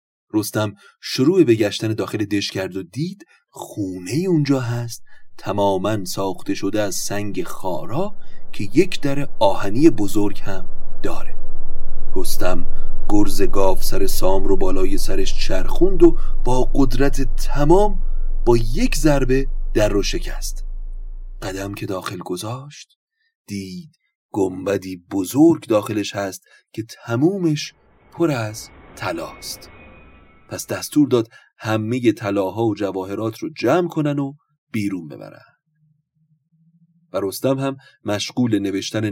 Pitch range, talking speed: 100-145 Hz, 120 wpm